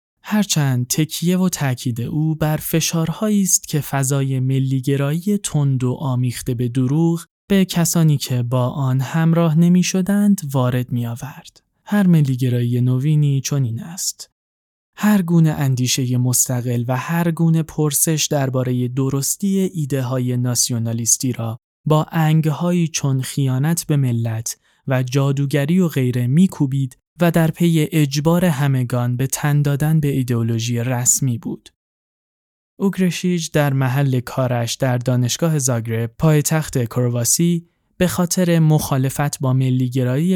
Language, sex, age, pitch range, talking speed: Persian, male, 20-39, 125-160 Hz, 130 wpm